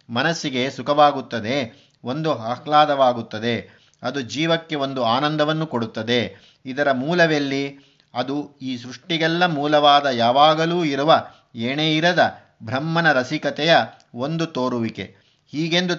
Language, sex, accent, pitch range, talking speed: Kannada, male, native, 130-155 Hz, 90 wpm